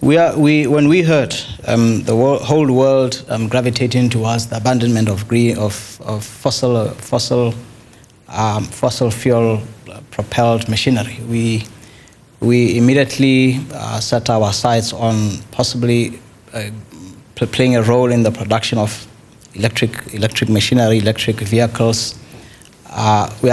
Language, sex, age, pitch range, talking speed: English, male, 20-39, 110-125 Hz, 115 wpm